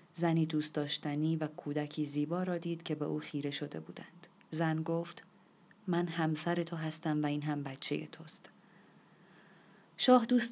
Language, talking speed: Persian, 155 wpm